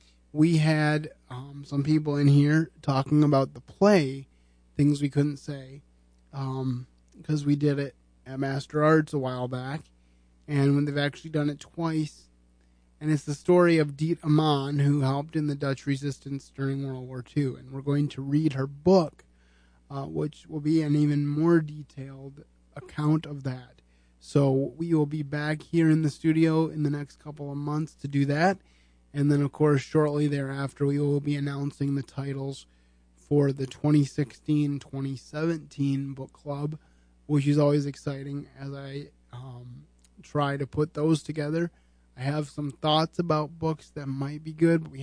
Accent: American